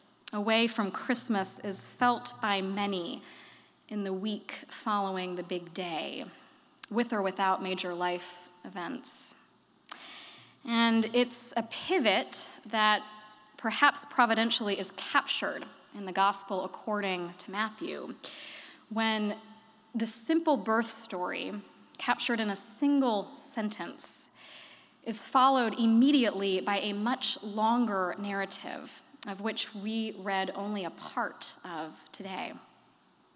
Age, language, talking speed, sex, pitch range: 20-39, English, 110 wpm, female, 200-235 Hz